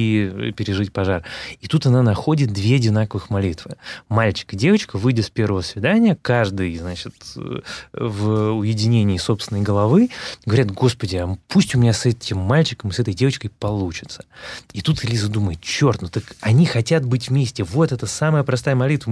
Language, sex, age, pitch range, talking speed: Russian, male, 20-39, 100-130 Hz, 165 wpm